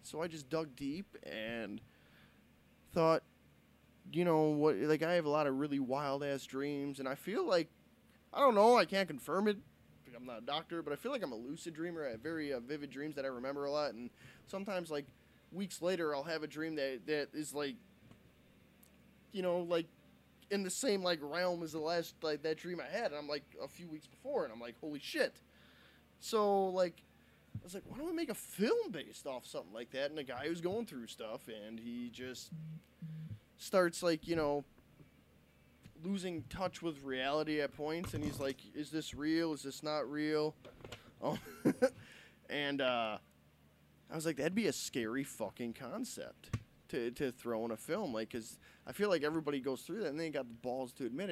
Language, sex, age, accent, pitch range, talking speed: English, male, 20-39, American, 125-165 Hz, 205 wpm